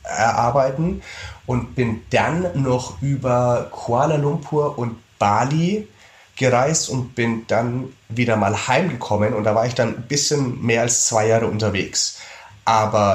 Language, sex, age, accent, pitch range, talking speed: German, male, 30-49, German, 110-135 Hz, 135 wpm